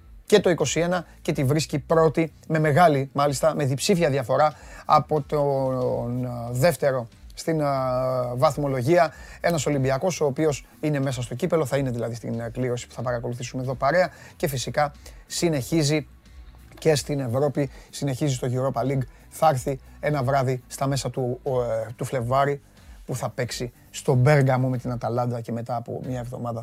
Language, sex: Greek, male